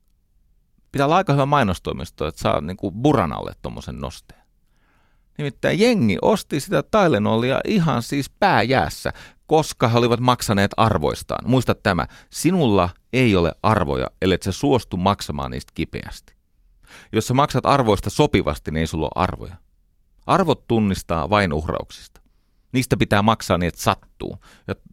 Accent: native